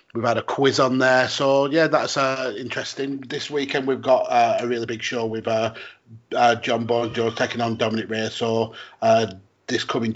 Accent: British